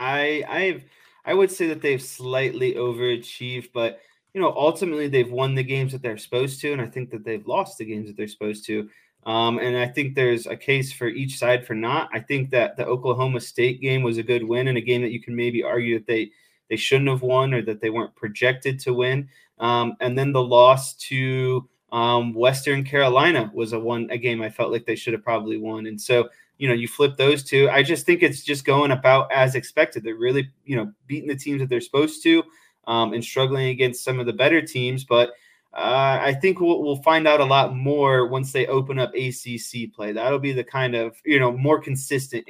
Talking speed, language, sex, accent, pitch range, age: 230 wpm, English, male, American, 120-140 Hz, 20-39